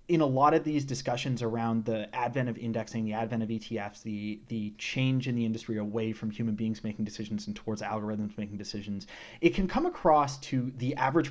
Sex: male